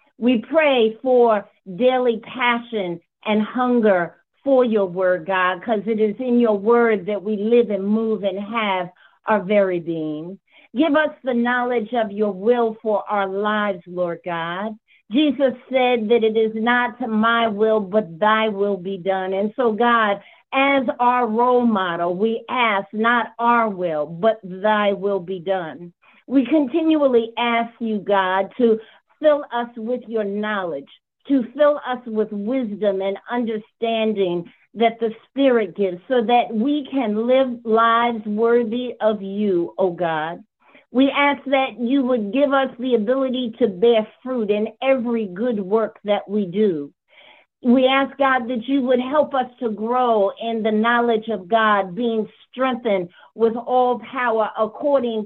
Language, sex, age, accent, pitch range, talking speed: English, female, 50-69, American, 205-250 Hz, 155 wpm